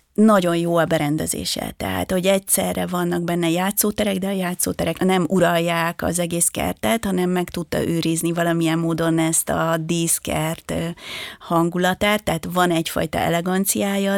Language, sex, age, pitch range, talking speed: Hungarian, female, 30-49, 165-195 Hz, 135 wpm